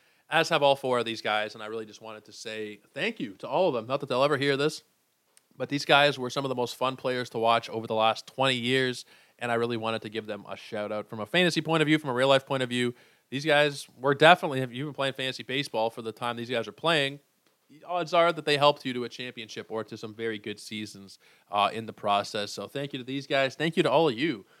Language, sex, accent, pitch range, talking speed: English, male, American, 110-140 Hz, 275 wpm